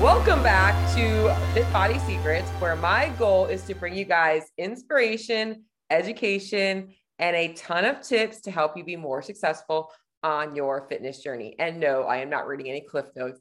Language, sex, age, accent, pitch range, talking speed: English, female, 30-49, American, 155-190 Hz, 180 wpm